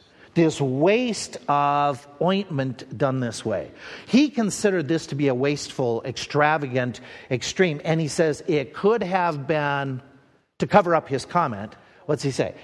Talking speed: 145 wpm